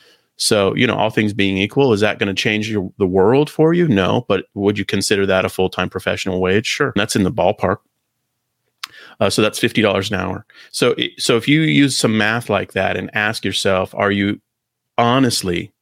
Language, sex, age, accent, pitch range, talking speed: English, male, 30-49, American, 95-110 Hz, 210 wpm